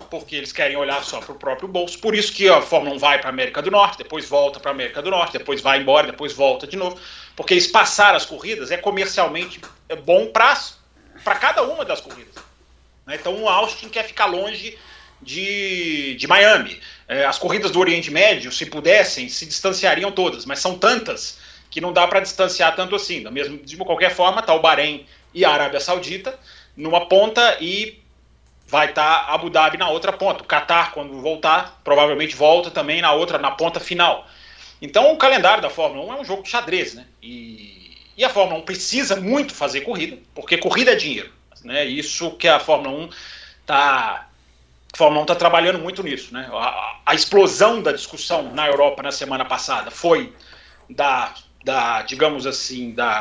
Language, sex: Portuguese, male